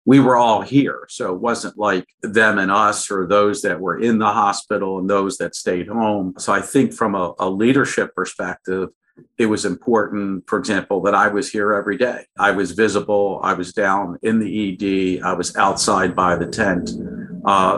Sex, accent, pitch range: male, American, 95-105 Hz